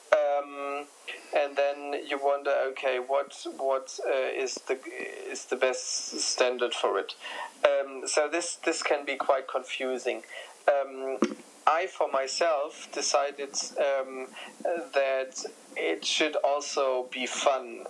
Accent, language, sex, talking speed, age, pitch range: German, English, male, 125 wpm, 30-49, 130-155 Hz